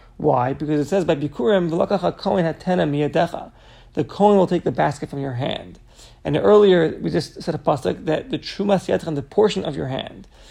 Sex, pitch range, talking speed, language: male, 150-195 Hz, 190 wpm, English